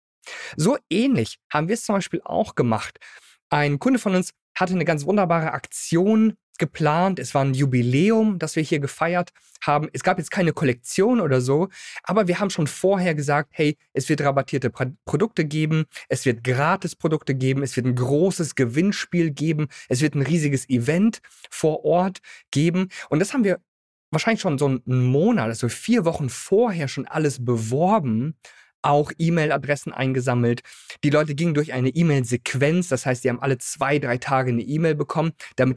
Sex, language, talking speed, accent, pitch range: male, German, 170 wpm, German, 130-175 Hz